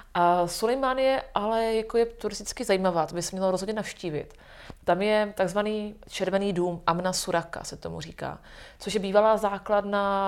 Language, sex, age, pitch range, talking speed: Czech, female, 30-49, 170-195 Hz, 160 wpm